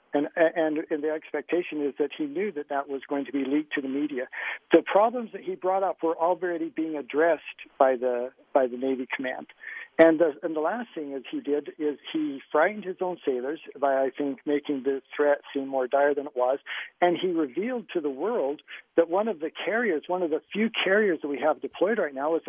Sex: male